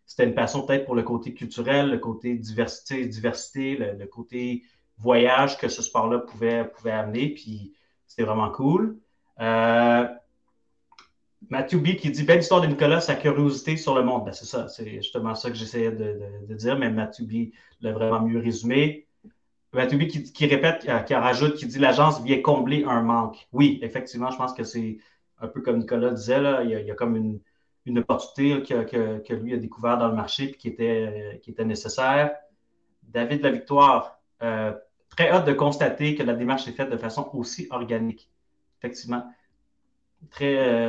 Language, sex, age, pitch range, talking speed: French, male, 30-49, 115-140 Hz, 190 wpm